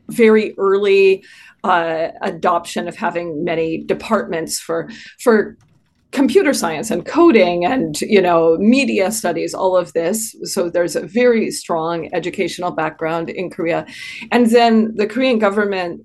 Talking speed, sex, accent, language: 130 wpm, female, American, English